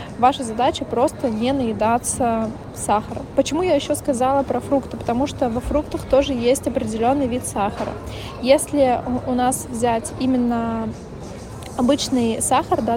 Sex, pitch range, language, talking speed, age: female, 245-275 Hz, Russian, 135 wpm, 20-39